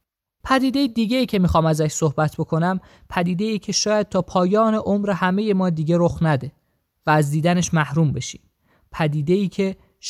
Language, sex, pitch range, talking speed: Persian, male, 150-195 Hz, 165 wpm